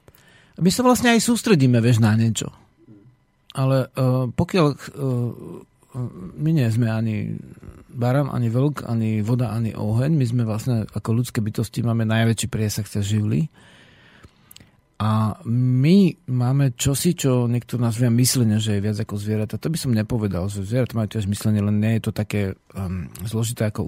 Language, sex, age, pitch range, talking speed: Slovak, male, 40-59, 105-125 Hz, 165 wpm